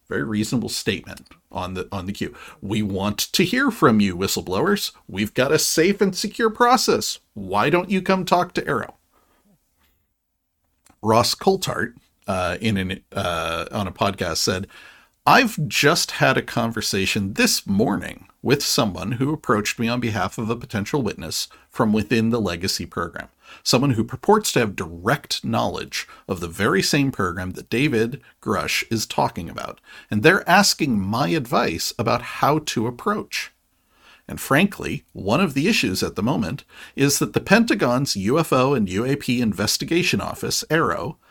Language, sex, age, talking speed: English, male, 40-59, 155 wpm